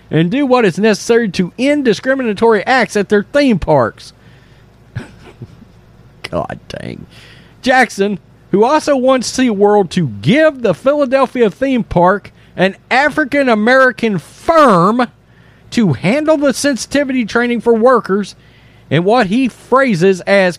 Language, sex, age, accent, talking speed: English, male, 40-59, American, 120 wpm